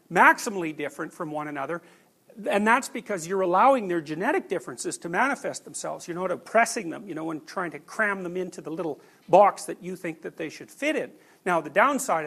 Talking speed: 205 wpm